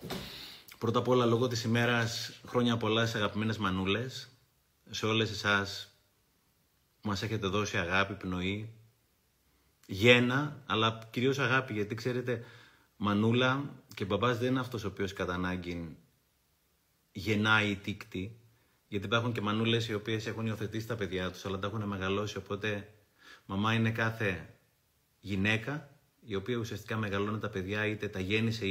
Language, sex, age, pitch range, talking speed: Greek, male, 30-49, 100-125 Hz, 155 wpm